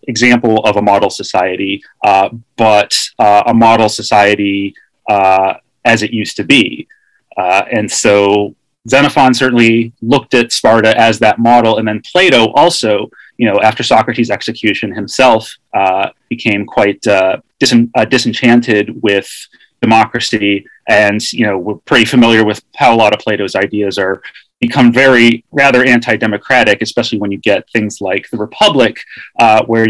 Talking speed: 150 wpm